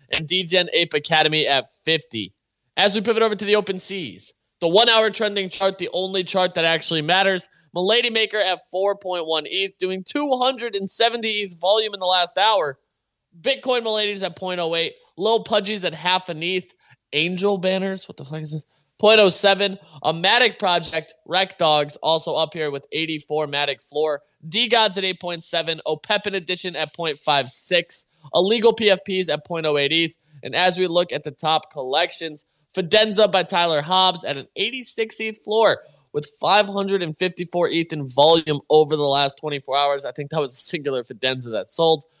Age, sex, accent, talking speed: 20-39, male, American, 165 wpm